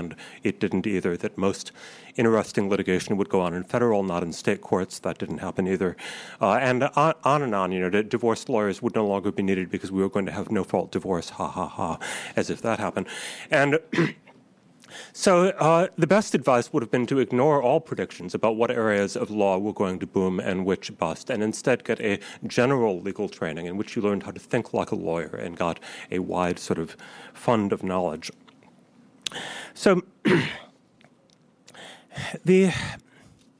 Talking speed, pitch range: 190 wpm, 95-135 Hz